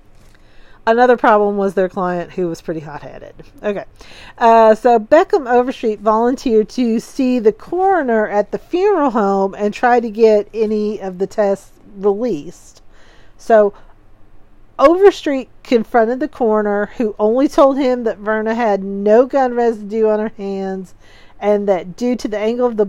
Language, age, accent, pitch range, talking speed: English, 40-59, American, 200-245 Hz, 150 wpm